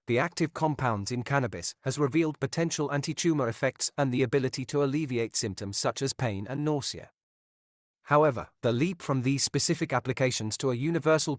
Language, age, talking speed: English, 40-59, 165 wpm